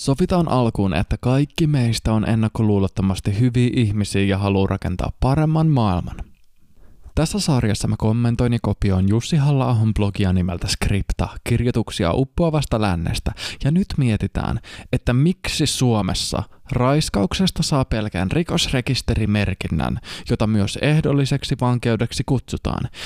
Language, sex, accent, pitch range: Finnish, male, native, 100-140 Hz